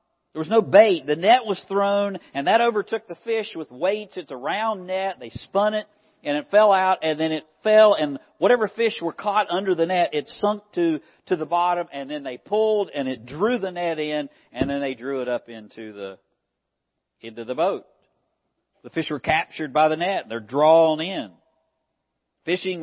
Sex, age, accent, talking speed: male, 50-69, American, 200 wpm